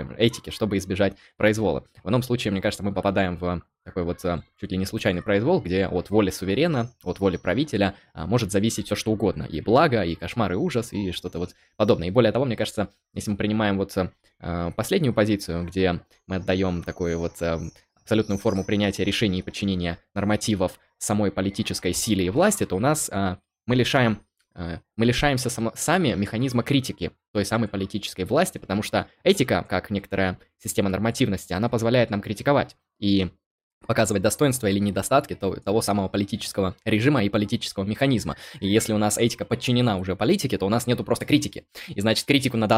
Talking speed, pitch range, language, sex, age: 175 wpm, 95-115 Hz, Russian, male, 20-39